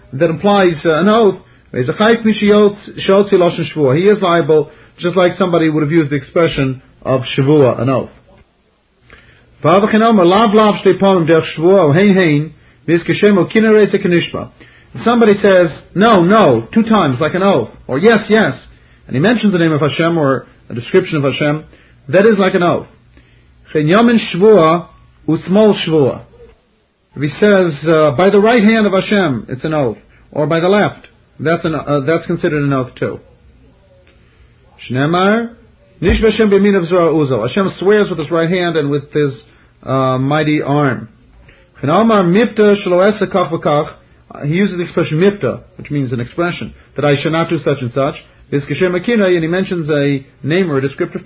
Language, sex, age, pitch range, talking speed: English, male, 40-59, 145-195 Hz, 130 wpm